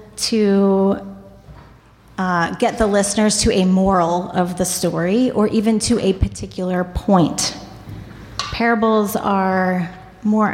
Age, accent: 30-49, American